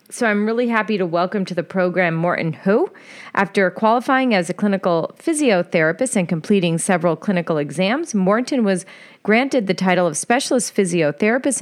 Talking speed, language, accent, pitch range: 155 wpm, English, American, 175-245 Hz